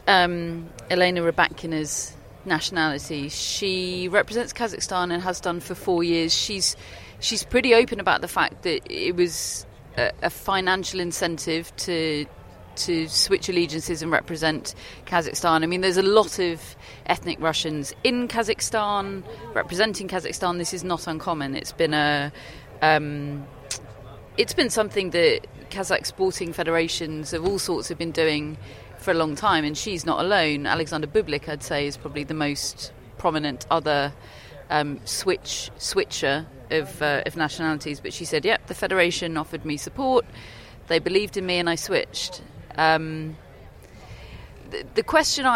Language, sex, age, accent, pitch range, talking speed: English, female, 30-49, British, 150-185 Hz, 150 wpm